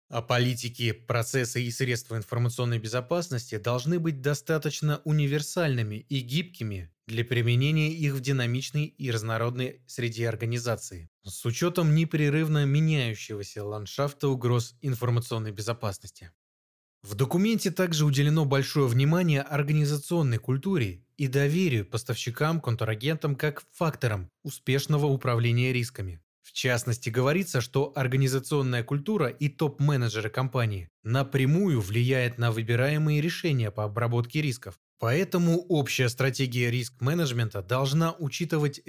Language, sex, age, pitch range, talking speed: Russian, male, 20-39, 120-150 Hz, 105 wpm